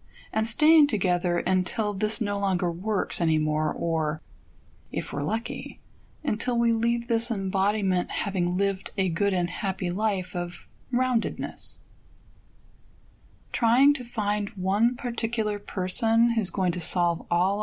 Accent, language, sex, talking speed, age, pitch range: American, English, female, 130 wpm, 30-49, 175-230 Hz